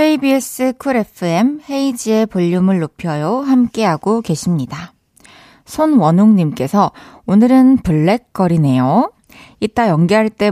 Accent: native